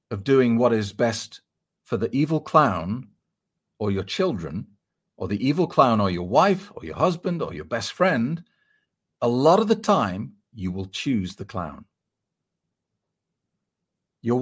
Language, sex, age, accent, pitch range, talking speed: English, male, 40-59, British, 95-120 Hz, 155 wpm